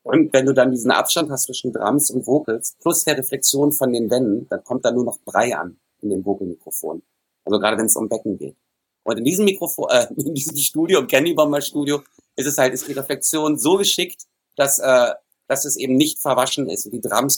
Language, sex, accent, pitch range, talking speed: German, male, German, 125-155 Hz, 220 wpm